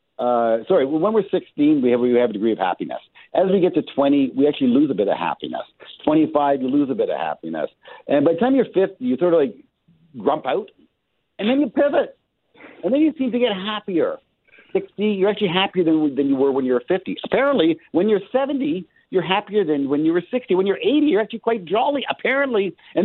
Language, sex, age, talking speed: English, male, 50-69, 225 wpm